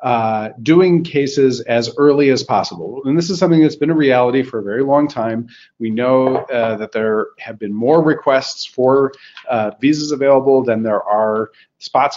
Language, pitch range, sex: English, 115-140 Hz, male